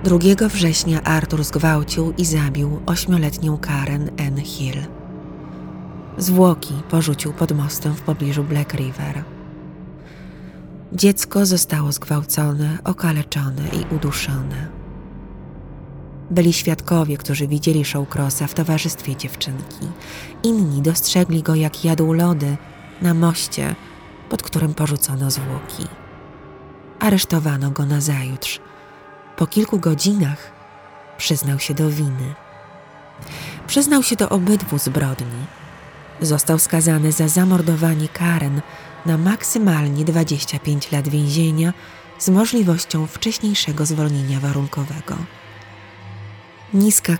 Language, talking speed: Polish, 95 wpm